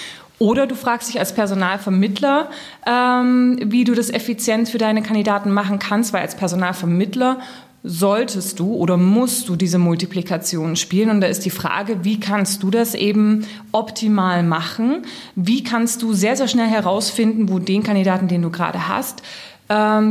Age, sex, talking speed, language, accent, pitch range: 20-39, female, 160 wpm, German, German, 190-230 Hz